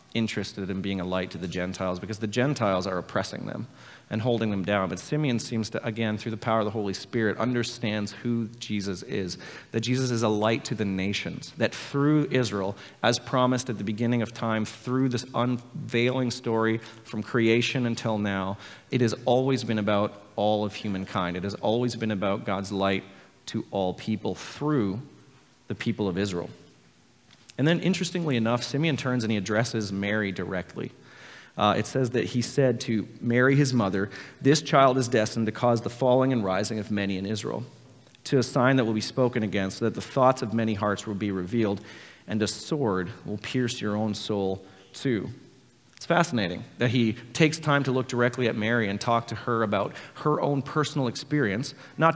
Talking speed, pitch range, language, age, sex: 190 wpm, 105-125 Hz, English, 30-49, male